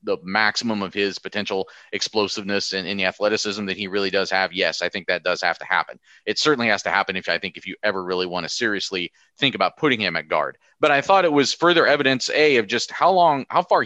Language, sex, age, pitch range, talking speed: English, male, 30-49, 105-135 Hz, 250 wpm